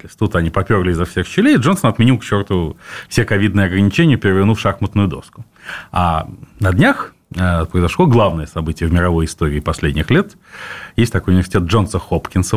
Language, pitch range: Russian, 90-110 Hz